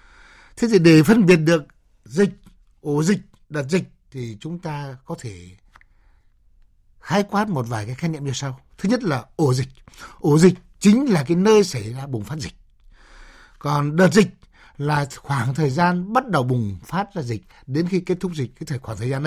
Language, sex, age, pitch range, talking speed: Vietnamese, male, 60-79, 135-200 Hz, 195 wpm